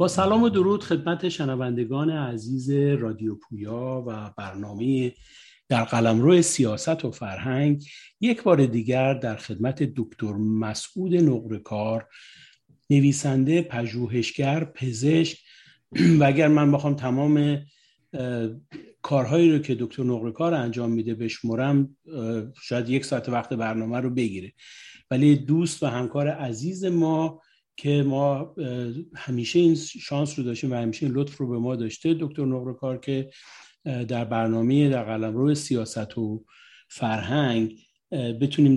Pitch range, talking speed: 120-155 Hz, 125 wpm